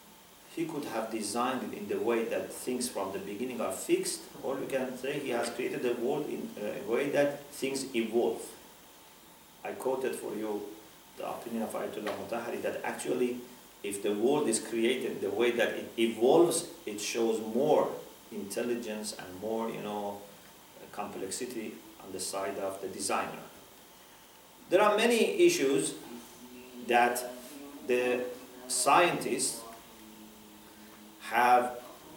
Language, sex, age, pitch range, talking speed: English, male, 40-59, 115-165 Hz, 140 wpm